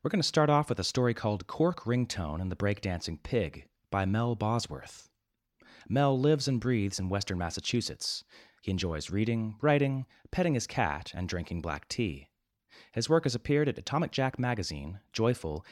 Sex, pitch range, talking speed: male, 95-135 Hz, 170 wpm